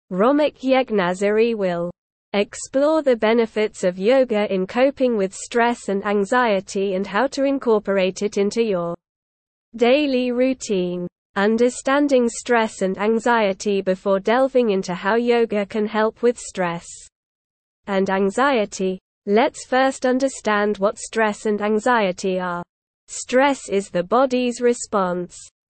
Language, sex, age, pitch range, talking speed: English, female, 20-39, 195-250 Hz, 120 wpm